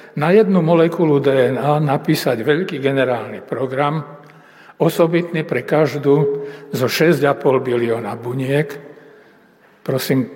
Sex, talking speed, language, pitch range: male, 95 wpm, Slovak, 130-165 Hz